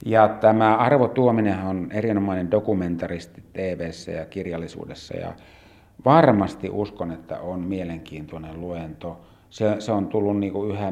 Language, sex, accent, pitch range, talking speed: Finnish, male, native, 90-115 Hz, 125 wpm